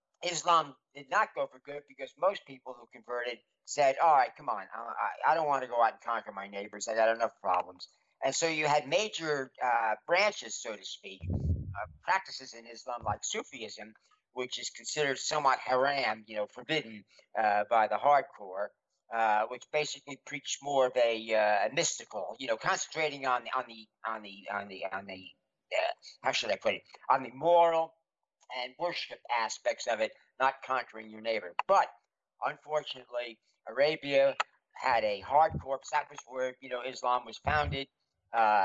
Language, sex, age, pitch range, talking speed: English, male, 50-69, 110-145 Hz, 160 wpm